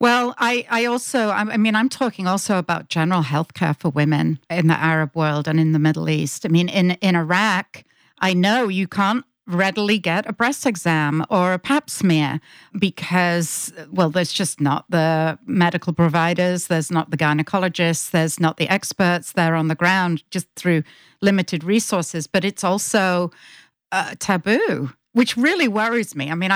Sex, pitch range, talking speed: female, 155-195 Hz, 170 wpm